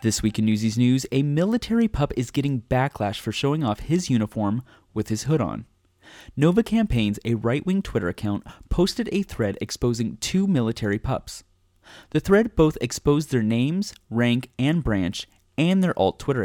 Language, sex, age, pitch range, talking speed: English, male, 30-49, 105-155 Hz, 170 wpm